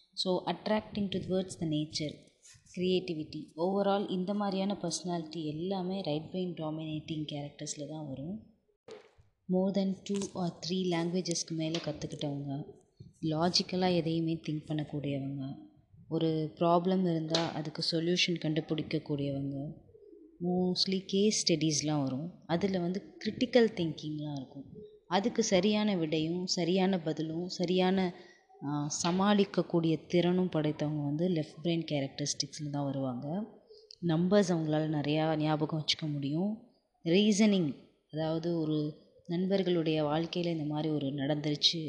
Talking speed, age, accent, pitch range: 110 wpm, 20-39, native, 155-185 Hz